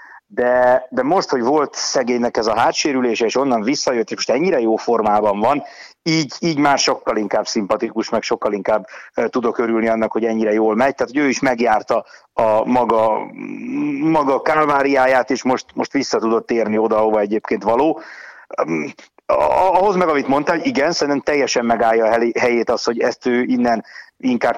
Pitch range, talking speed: 110-140 Hz, 165 wpm